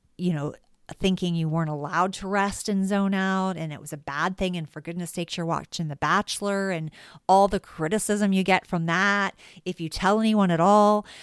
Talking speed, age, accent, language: 210 wpm, 40-59, American, English